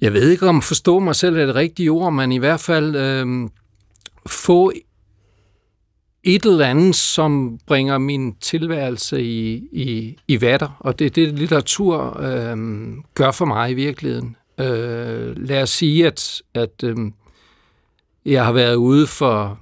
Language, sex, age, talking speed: Danish, male, 60-79, 155 wpm